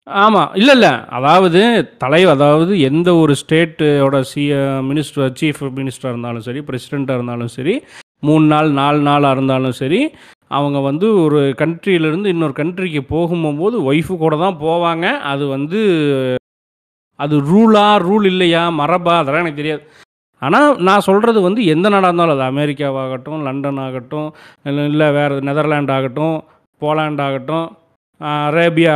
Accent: native